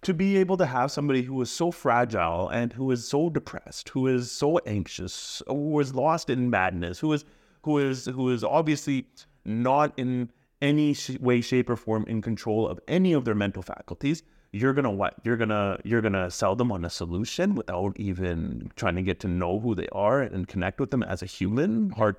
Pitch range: 100-135 Hz